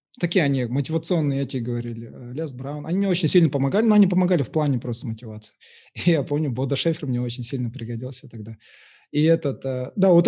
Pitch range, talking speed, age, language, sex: 130-170 Hz, 195 wpm, 20-39, Russian, male